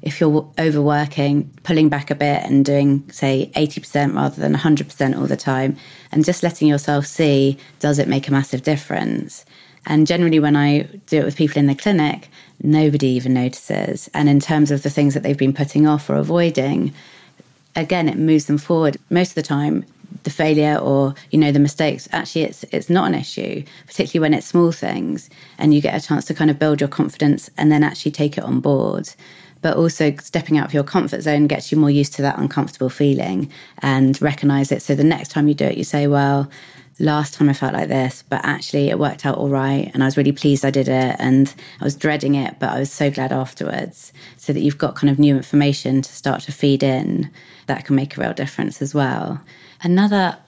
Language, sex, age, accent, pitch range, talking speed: English, female, 30-49, British, 140-155 Hz, 220 wpm